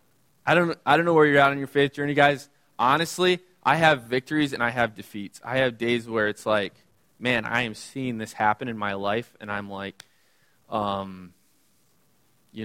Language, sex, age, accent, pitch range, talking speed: English, male, 20-39, American, 110-145 Hz, 195 wpm